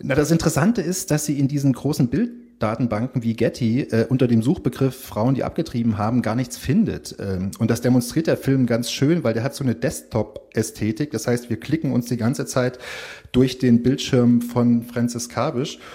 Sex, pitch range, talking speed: male, 115-135 Hz, 190 wpm